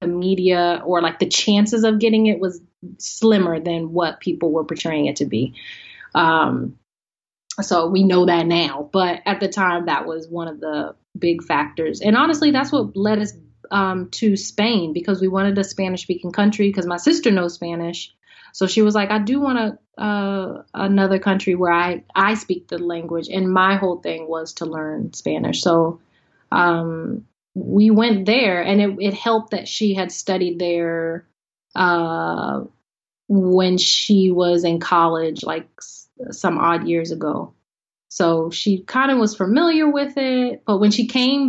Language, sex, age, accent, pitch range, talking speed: English, female, 30-49, American, 170-215 Hz, 175 wpm